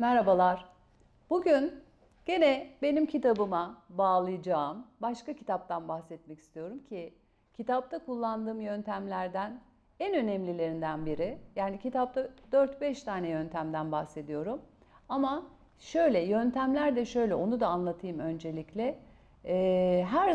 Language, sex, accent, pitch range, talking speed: English, female, Turkish, 180-255 Hz, 95 wpm